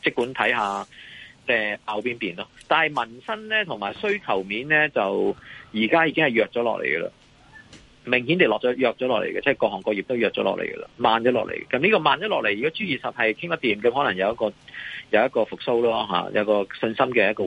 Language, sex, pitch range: Chinese, male, 95-125 Hz